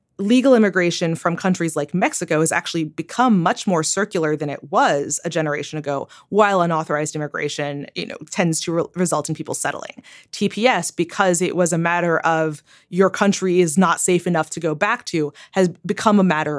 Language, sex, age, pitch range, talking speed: English, female, 20-39, 160-205 Hz, 180 wpm